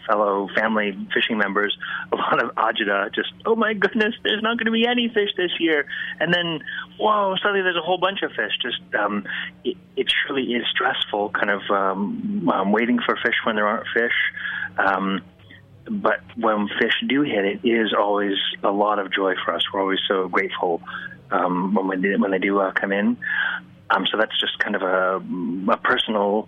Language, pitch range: English, 100-155 Hz